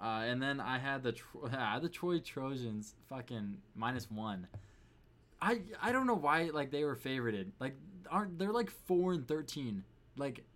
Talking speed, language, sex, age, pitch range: 170 wpm, English, male, 20-39, 105-140 Hz